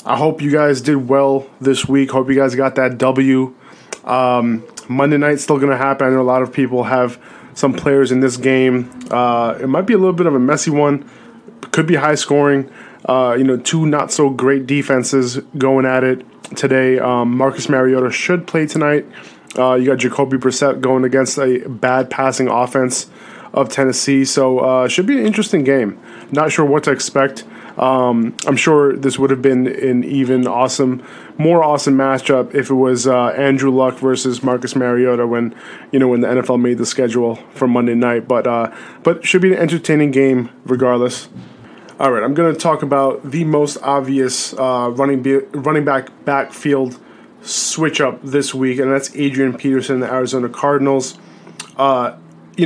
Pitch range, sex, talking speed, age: 125-140 Hz, male, 185 wpm, 20-39